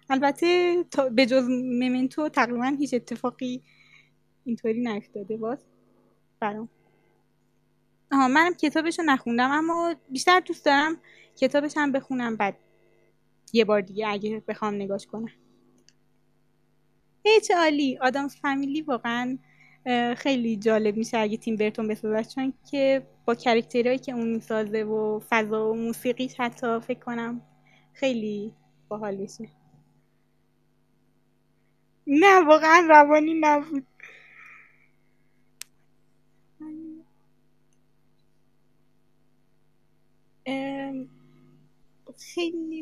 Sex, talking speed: female, 90 wpm